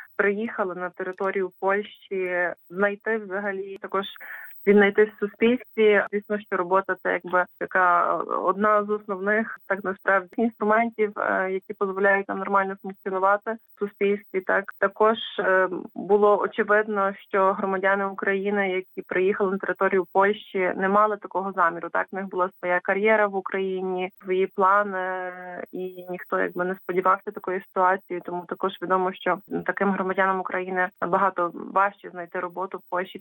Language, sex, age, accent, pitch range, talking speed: Ukrainian, female, 20-39, native, 185-205 Hz, 135 wpm